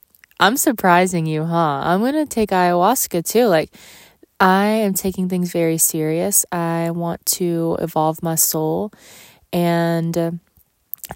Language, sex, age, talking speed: English, female, 20-39, 135 wpm